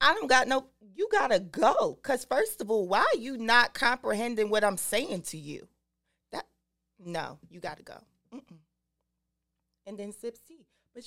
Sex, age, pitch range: female, 30-49, 195-260 Hz